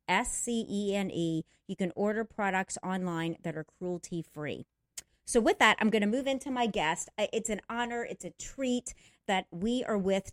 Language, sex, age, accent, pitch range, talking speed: English, female, 40-59, American, 175-225 Hz, 170 wpm